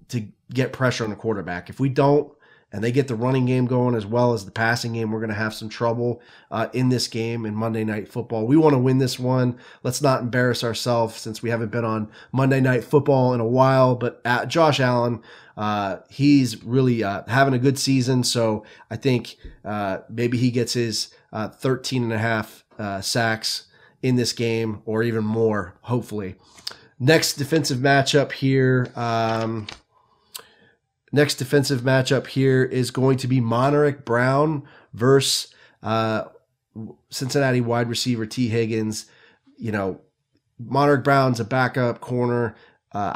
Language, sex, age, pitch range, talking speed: English, male, 30-49, 110-130 Hz, 170 wpm